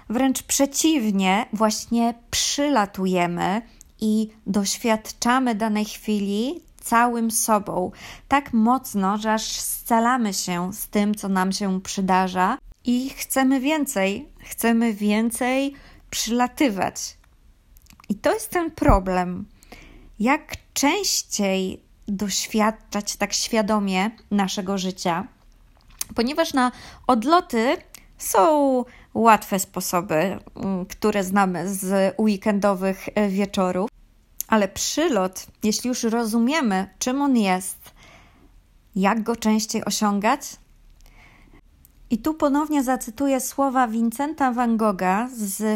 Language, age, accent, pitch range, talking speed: Polish, 20-39, native, 195-245 Hz, 95 wpm